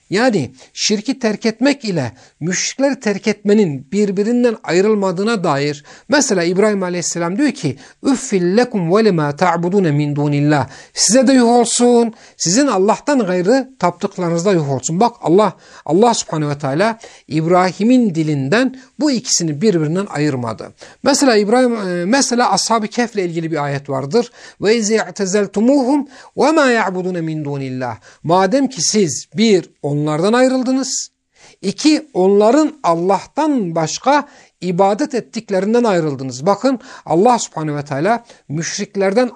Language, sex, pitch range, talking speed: Turkish, male, 170-245 Hz, 115 wpm